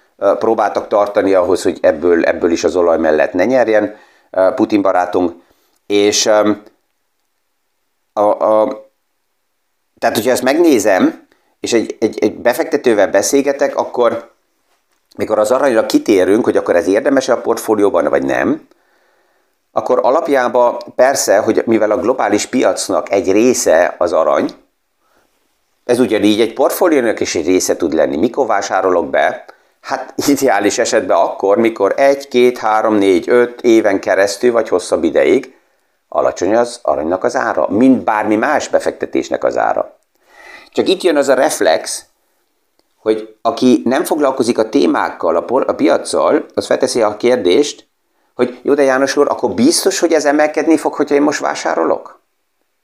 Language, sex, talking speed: Hungarian, male, 135 wpm